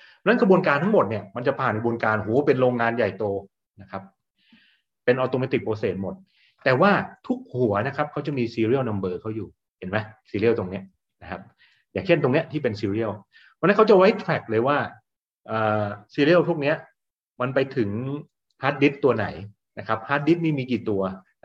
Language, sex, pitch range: Thai, male, 110-150 Hz